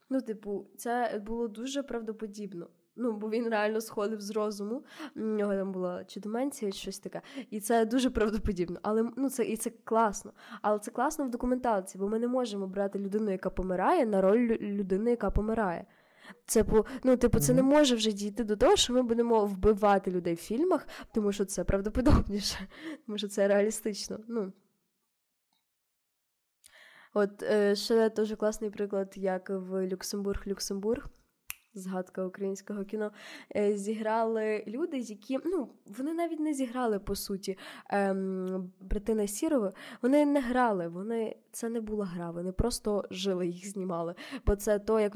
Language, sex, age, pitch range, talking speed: Ukrainian, female, 20-39, 195-235 Hz, 155 wpm